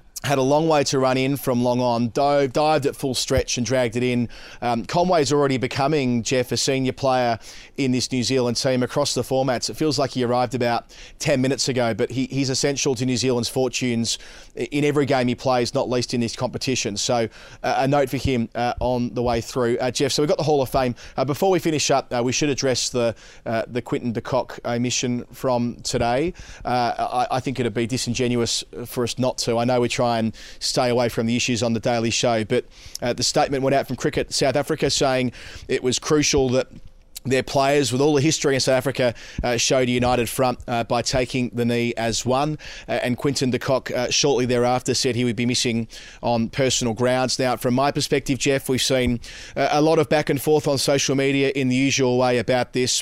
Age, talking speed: 30-49, 220 wpm